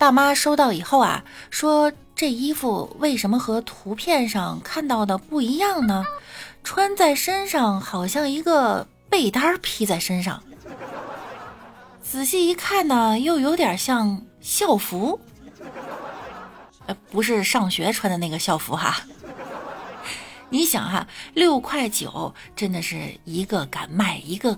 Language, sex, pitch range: Chinese, female, 195-290 Hz